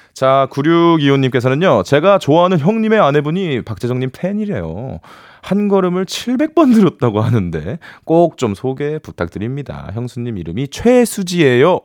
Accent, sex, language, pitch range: native, male, Korean, 105-175 Hz